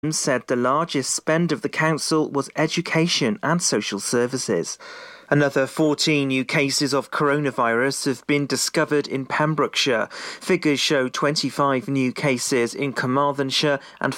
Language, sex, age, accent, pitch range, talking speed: English, male, 40-59, British, 130-155 Hz, 130 wpm